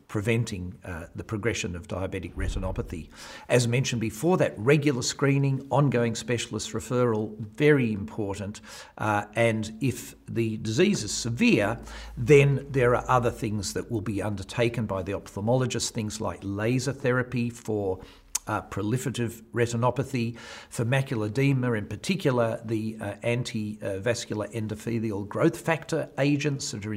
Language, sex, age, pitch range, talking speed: English, male, 50-69, 105-125 Hz, 135 wpm